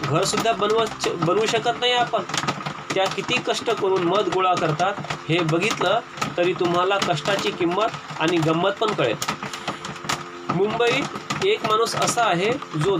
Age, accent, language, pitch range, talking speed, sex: 30-49, native, Marathi, 160-205 Hz, 120 wpm, male